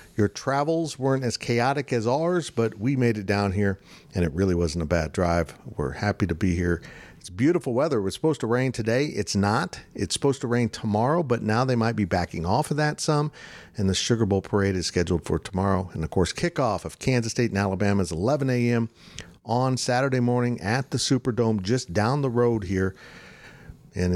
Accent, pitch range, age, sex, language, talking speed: American, 95-135 Hz, 50-69, male, English, 210 wpm